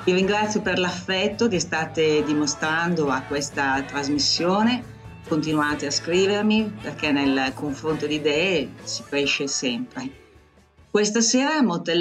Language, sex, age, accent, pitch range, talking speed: Italian, female, 40-59, native, 145-185 Hz, 120 wpm